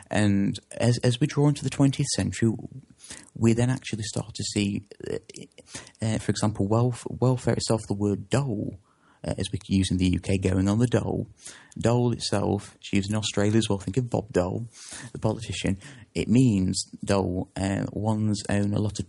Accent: British